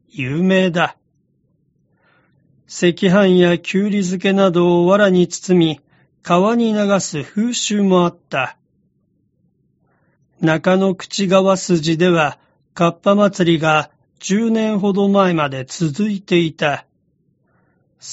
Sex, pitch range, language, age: male, 165-195 Hz, Japanese, 40-59